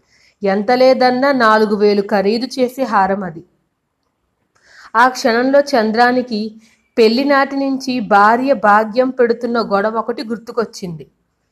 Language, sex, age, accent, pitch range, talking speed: Telugu, female, 30-49, native, 200-245 Hz, 100 wpm